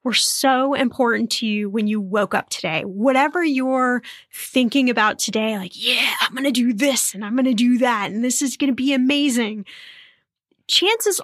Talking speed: 175 wpm